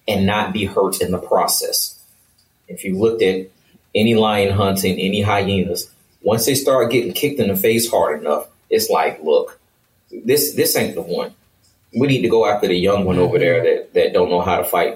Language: English